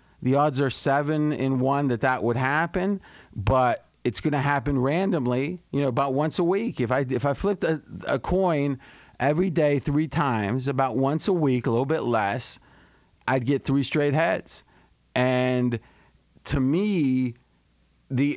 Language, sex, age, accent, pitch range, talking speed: English, male, 40-59, American, 125-155 Hz, 165 wpm